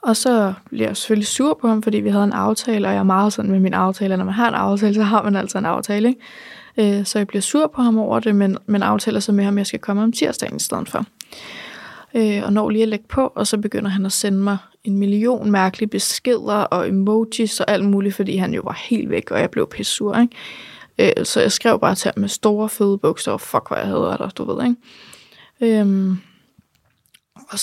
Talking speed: 240 wpm